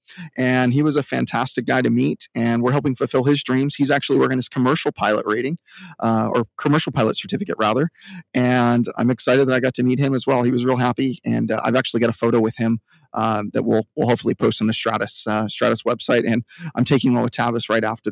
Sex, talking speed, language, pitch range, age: male, 235 wpm, English, 110-130 Hz, 30-49